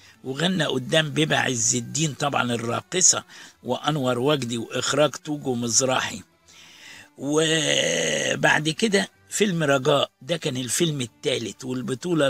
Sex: male